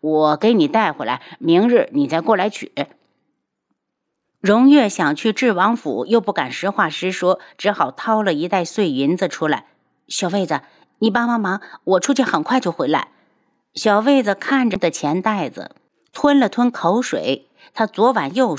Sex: female